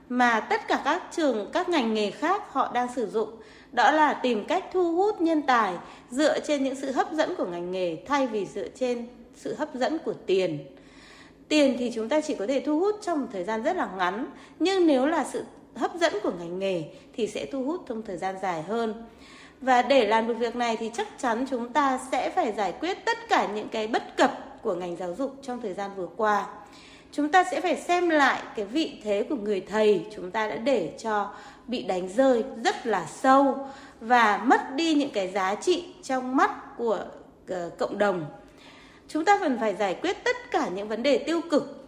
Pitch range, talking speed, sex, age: 215-315 Hz, 215 wpm, female, 20-39